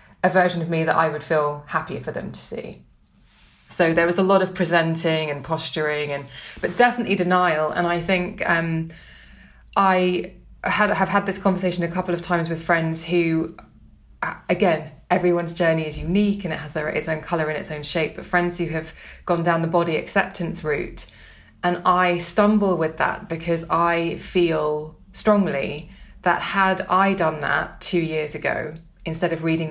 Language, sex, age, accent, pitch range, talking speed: English, female, 20-39, British, 160-185 Hz, 180 wpm